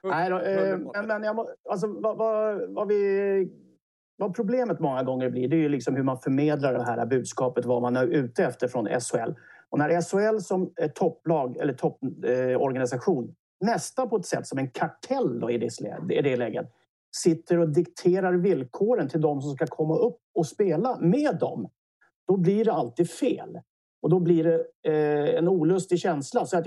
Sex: male